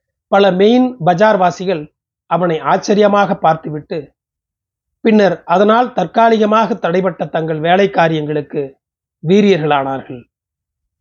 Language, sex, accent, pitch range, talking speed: Tamil, male, native, 150-205 Hz, 80 wpm